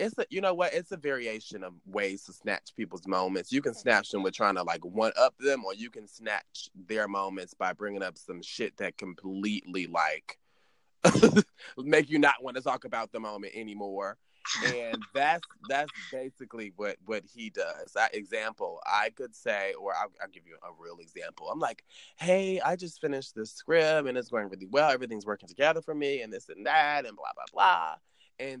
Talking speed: 205 wpm